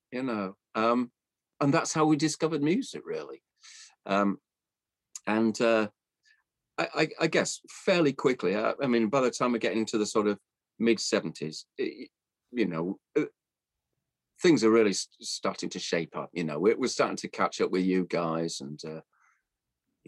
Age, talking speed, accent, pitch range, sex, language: 40-59, 175 wpm, British, 95-120 Hz, male, English